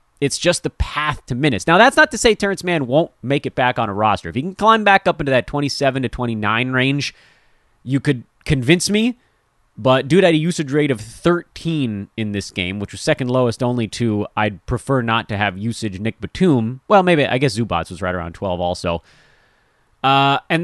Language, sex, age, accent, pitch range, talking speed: English, male, 30-49, American, 110-155 Hz, 210 wpm